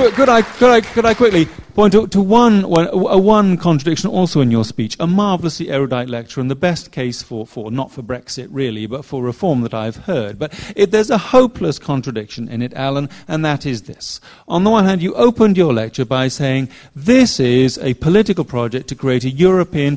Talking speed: 210 wpm